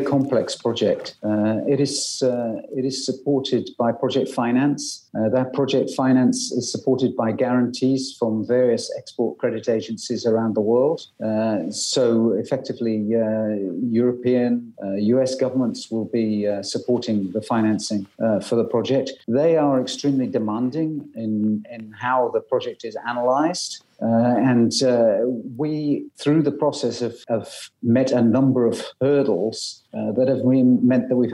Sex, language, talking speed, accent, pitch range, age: male, English, 145 wpm, British, 115-135 Hz, 50-69